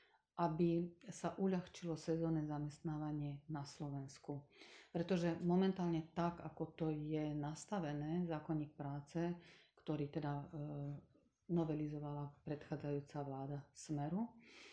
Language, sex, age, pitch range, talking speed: Slovak, female, 40-59, 150-170 Hz, 95 wpm